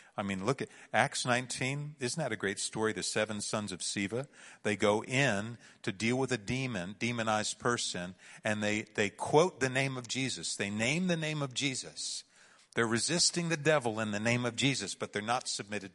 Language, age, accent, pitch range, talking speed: English, 50-69, American, 115-160 Hz, 200 wpm